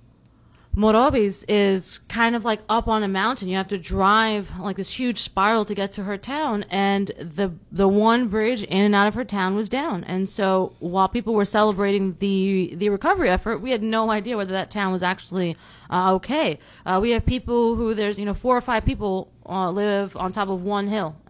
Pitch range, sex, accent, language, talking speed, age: 190-230 Hz, female, American, English, 210 wpm, 20-39